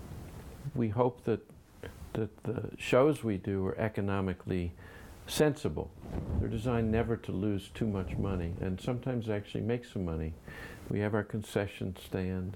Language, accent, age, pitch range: English, American, 50-69, 90-110 Hz